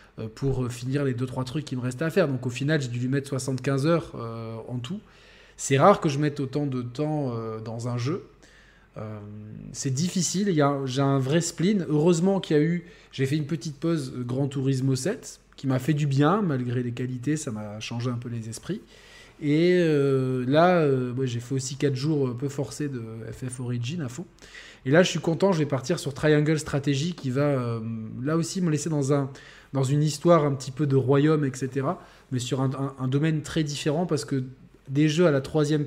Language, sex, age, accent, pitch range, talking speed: French, male, 20-39, French, 130-155 Hz, 225 wpm